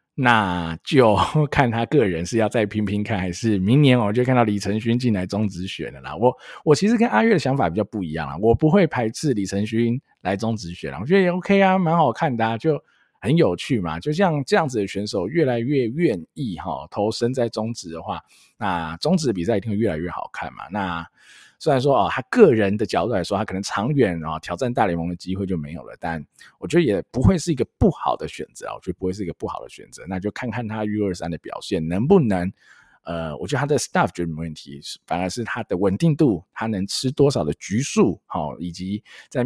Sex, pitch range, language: male, 90-120 Hz, Chinese